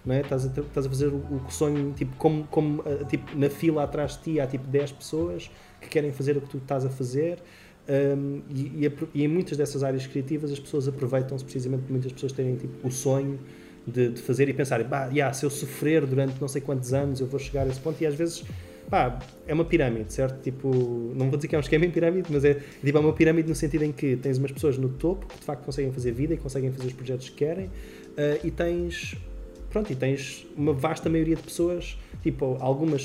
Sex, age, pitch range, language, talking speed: male, 20-39, 130-155 Hz, English, 235 wpm